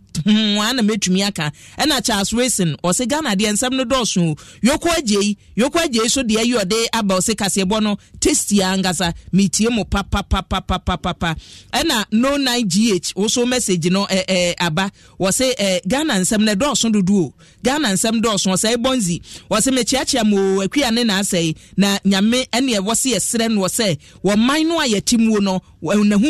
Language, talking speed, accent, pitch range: English, 165 wpm, Nigerian, 185-235 Hz